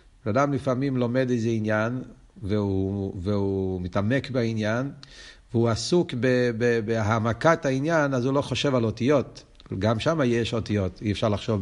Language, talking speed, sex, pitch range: Hebrew, 145 wpm, male, 110-140 Hz